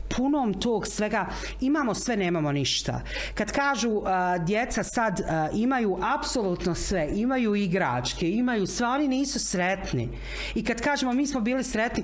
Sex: female